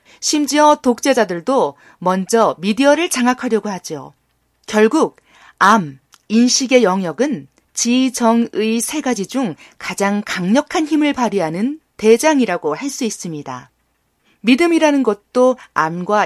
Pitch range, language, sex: 205-275 Hz, Korean, female